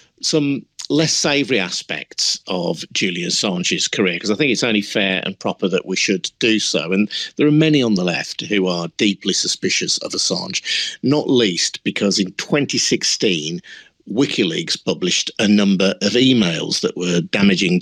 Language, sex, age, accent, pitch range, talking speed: English, male, 50-69, British, 95-110 Hz, 160 wpm